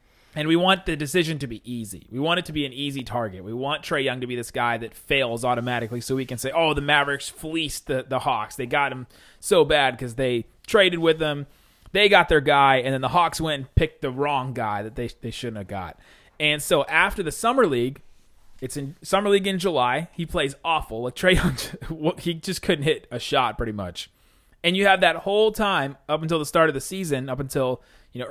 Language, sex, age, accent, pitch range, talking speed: English, male, 30-49, American, 125-155 Hz, 235 wpm